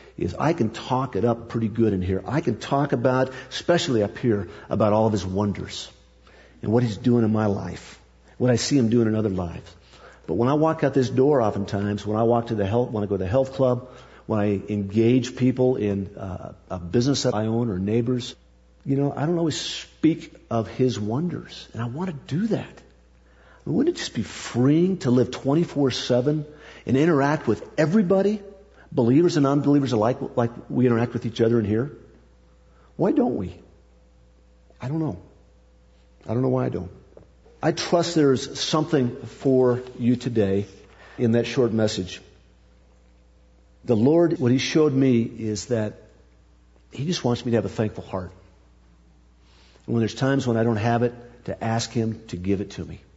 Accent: American